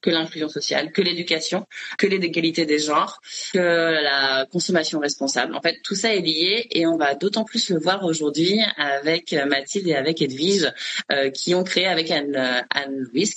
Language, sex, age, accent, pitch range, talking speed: French, female, 20-39, French, 135-175 Hz, 180 wpm